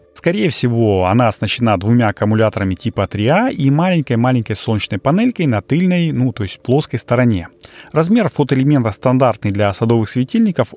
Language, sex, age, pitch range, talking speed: Russian, male, 30-49, 105-140 Hz, 140 wpm